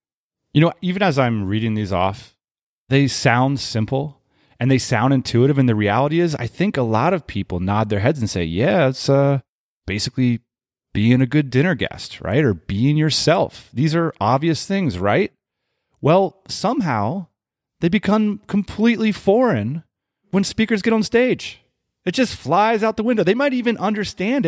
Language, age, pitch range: English, 30-49, 110-155 Hz